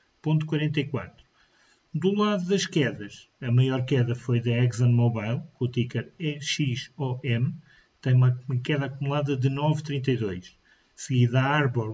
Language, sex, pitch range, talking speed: Portuguese, male, 125-145 Hz, 120 wpm